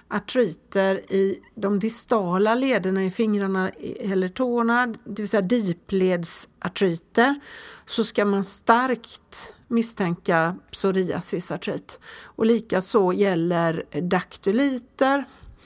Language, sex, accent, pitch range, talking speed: Swedish, female, native, 190-235 Hz, 90 wpm